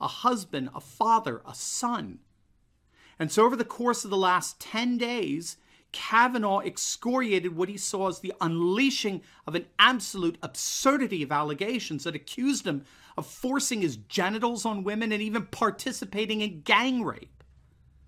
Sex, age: male, 40-59